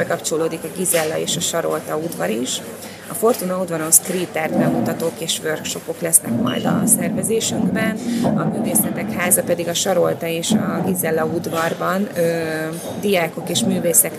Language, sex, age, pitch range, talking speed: Hungarian, female, 30-49, 165-200 Hz, 140 wpm